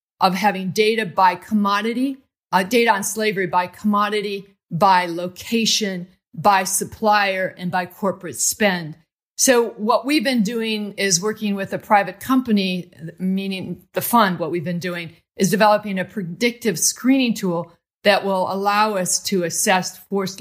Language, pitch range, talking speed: English, 185-220 Hz, 145 wpm